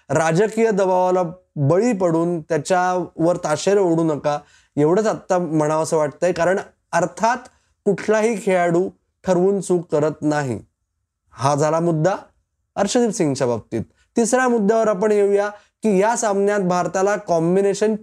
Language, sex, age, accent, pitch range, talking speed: Marathi, male, 20-39, native, 155-200 Hz, 120 wpm